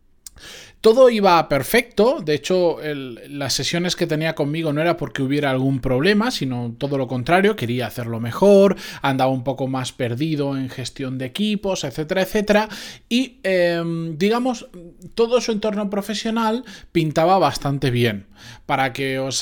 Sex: male